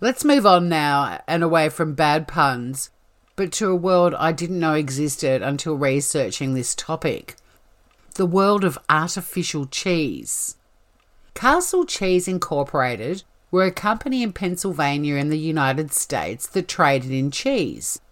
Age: 50-69